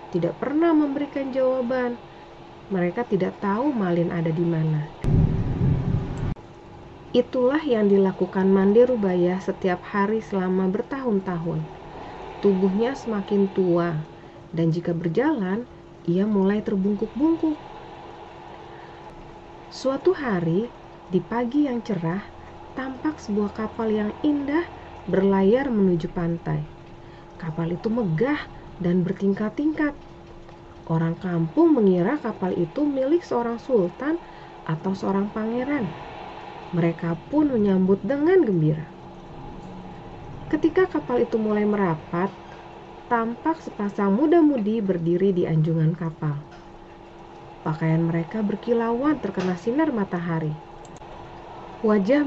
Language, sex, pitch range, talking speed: Indonesian, female, 170-240 Hz, 95 wpm